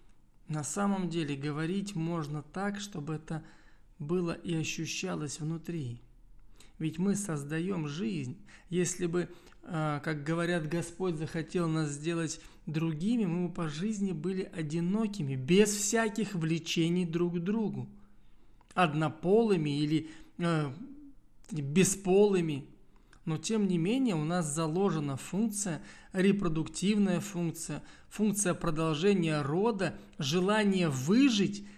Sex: male